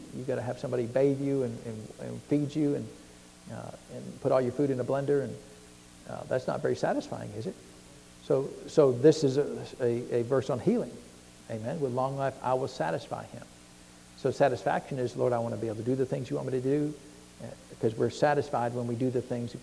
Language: English